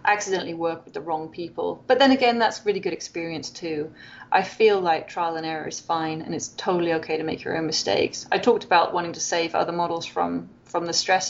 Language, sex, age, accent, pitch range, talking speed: English, female, 30-49, British, 165-205 Hz, 230 wpm